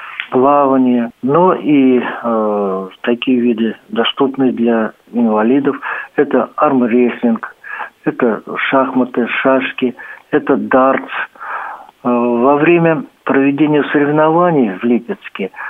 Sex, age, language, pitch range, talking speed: male, 50-69, Russian, 120-145 Hz, 90 wpm